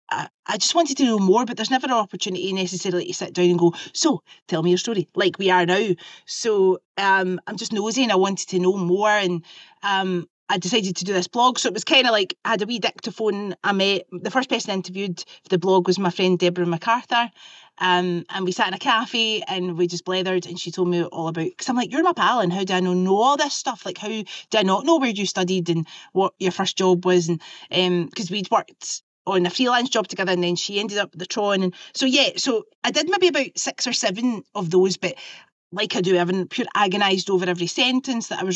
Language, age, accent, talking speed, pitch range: English, 30-49, British, 255 wpm, 180-220 Hz